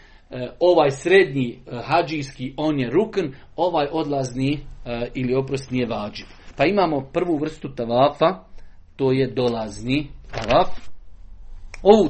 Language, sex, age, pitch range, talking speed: Croatian, male, 40-59, 125-155 Hz, 110 wpm